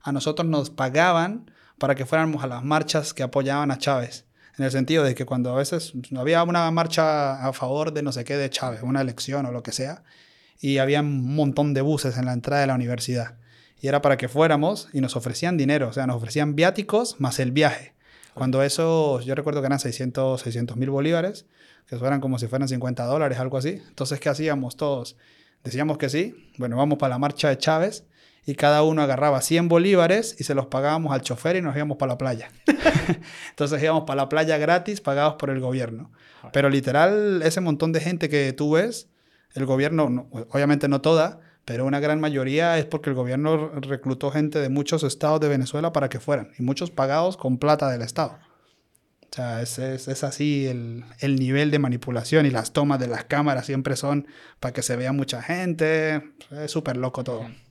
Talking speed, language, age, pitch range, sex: 205 wpm, Spanish, 30-49, 130-155 Hz, male